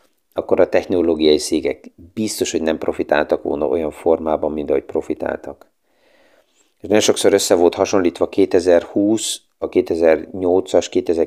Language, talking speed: Hungarian, 120 wpm